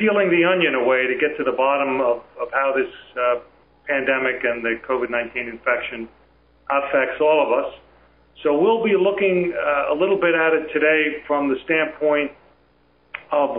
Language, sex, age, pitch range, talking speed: English, male, 40-59, 110-145 Hz, 165 wpm